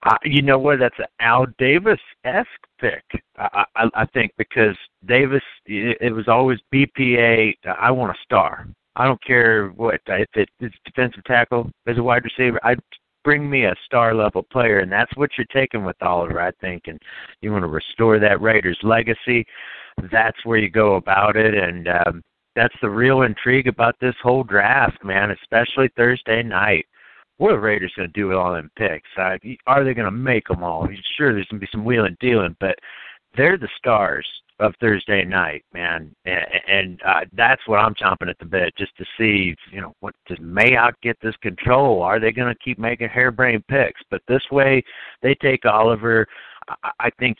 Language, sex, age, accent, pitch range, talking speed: English, male, 60-79, American, 100-125 Hz, 190 wpm